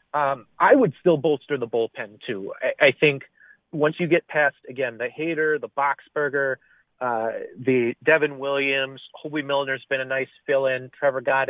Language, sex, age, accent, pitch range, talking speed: English, male, 30-49, American, 130-165 Hz, 165 wpm